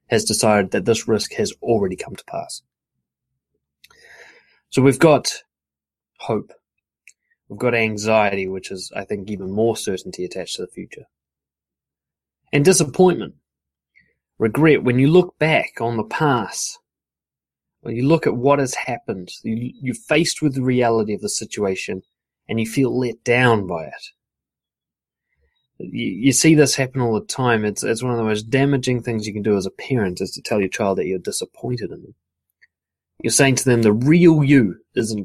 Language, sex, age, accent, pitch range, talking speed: English, male, 20-39, Australian, 90-125 Hz, 170 wpm